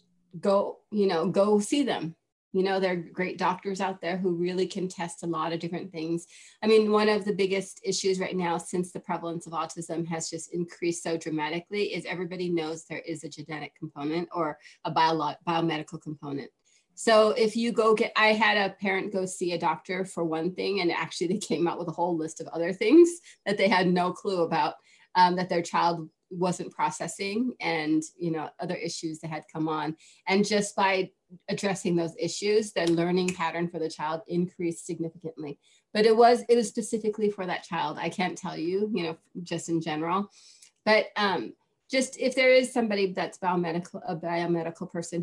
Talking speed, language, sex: 195 wpm, English, female